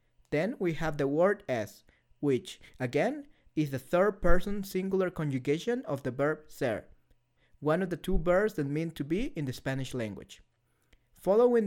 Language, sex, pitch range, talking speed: English, male, 135-180 Hz, 160 wpm